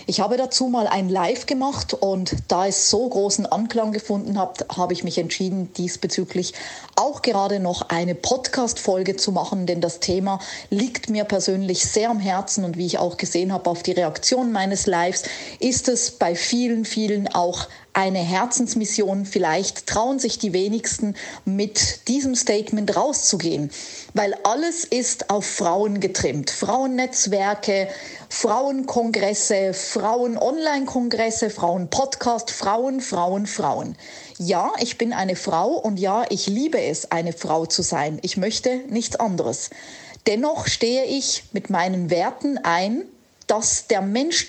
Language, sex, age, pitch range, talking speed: German, female, 40-59, 190-245 Hz, 145 wpm